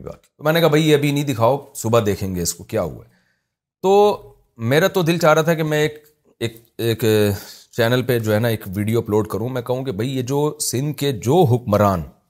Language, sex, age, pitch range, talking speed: Urdu, male, 40-59, 115-160 Hz, 175 wpm